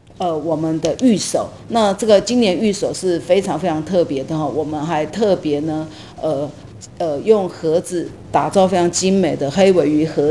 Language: Chinese